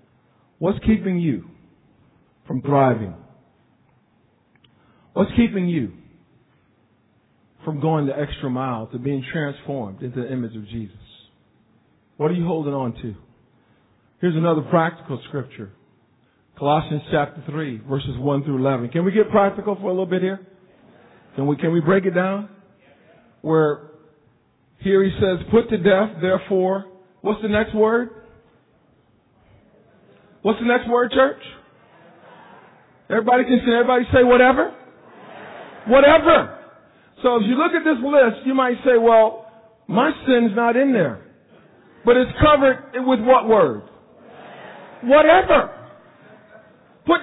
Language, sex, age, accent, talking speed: English, male, 50-69, American, 130 wpm